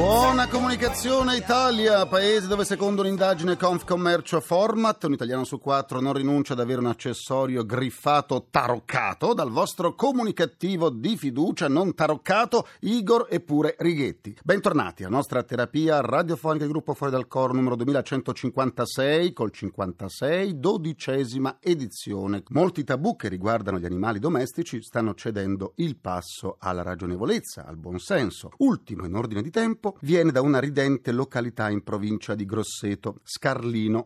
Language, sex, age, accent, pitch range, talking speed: Italian, male, 40-59, native, 105-170 Hz, 135 wpm